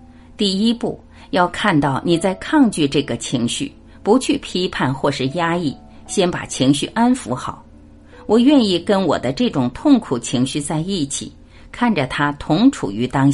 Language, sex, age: Chinese, female, 50-69